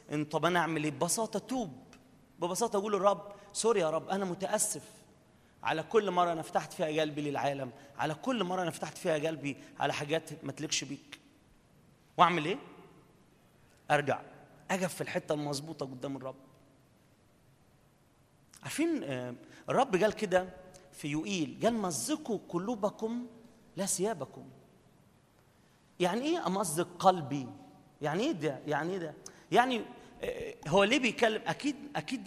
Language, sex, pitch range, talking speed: Arabic, male, 155-225 Hz, 130 wpm